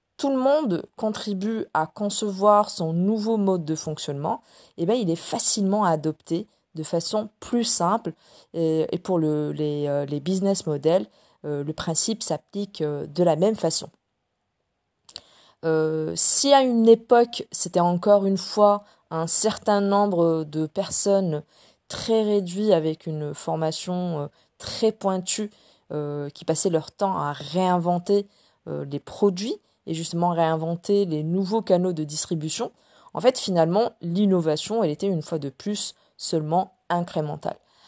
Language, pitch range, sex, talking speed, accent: French, 155-200 Hz, female, 130 wpm, French